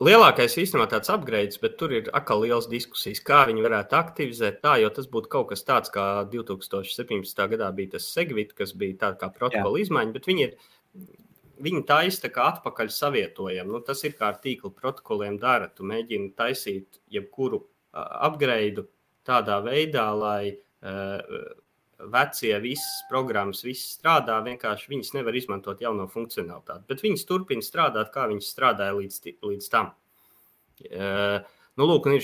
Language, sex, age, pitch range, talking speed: English, male, 30-49, 100-140 Hz, 155 wpm